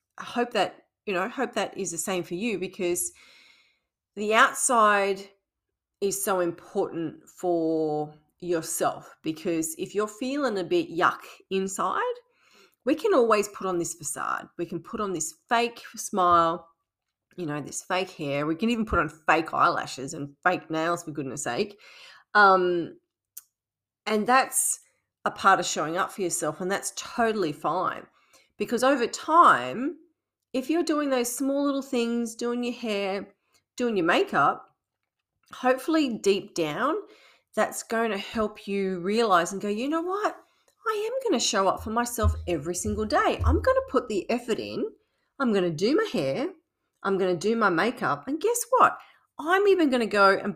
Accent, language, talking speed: Australian, English, 170 wpm